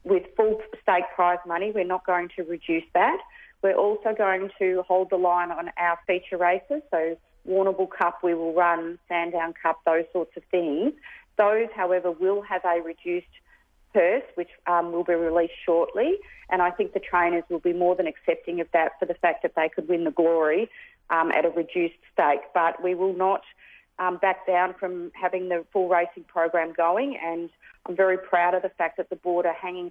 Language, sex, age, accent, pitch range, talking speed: English, female, 40-59, Australian, 170-190 Hz, 200 wpm